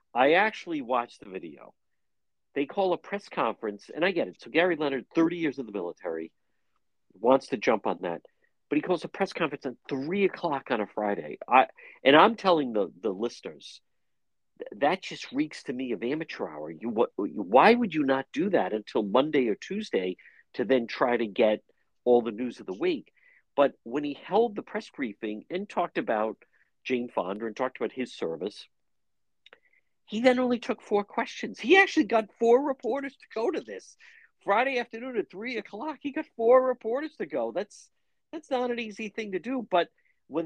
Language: English